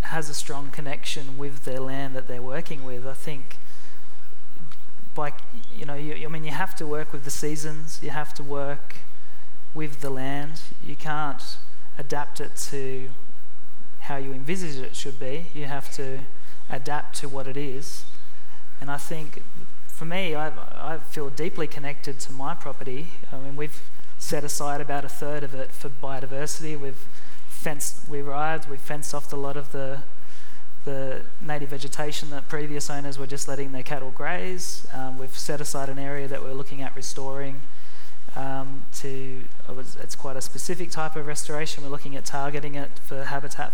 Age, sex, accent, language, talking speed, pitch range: 30-49, male, Australian, English, 175 wpm, 140-155 Hz